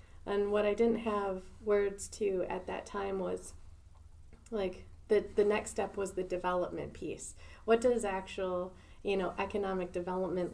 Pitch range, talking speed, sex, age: 180-205 Hz, 155 wpm, female, 30-49